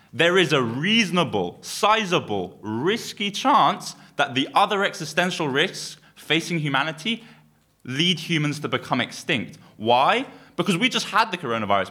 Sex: male